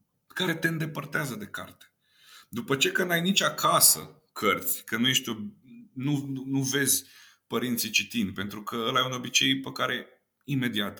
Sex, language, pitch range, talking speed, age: male, Romanian, 100-140 Hz, 165 wpm, 30-49